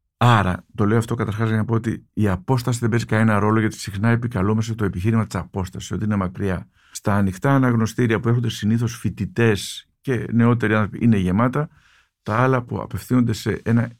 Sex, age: male, 50-69